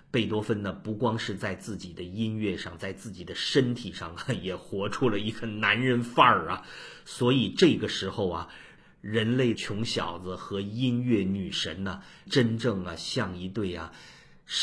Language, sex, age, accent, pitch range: Chinese, male, 50-69, native, 95-115 Hz